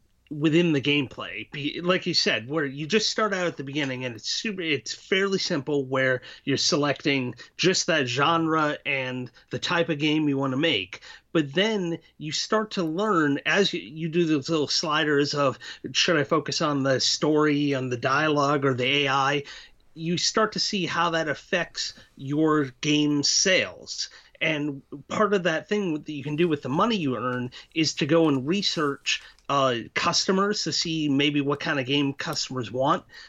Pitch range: 140-170 Hz